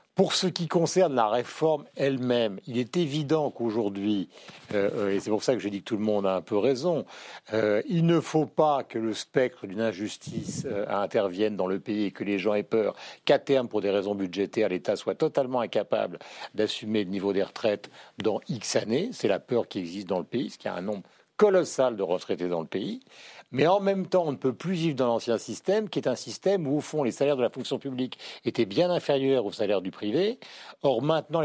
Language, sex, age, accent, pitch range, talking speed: French, male, 50-69, French, 110-150 Hz, 225 wpm